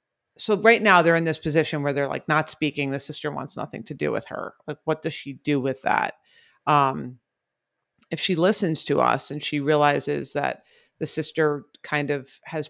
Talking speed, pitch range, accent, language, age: 200 wpm, 145-160 Hz, American, English, 30-49